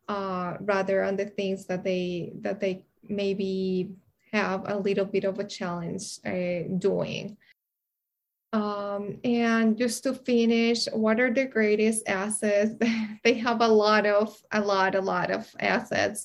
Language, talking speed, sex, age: English, 150 wpm, female, 20-39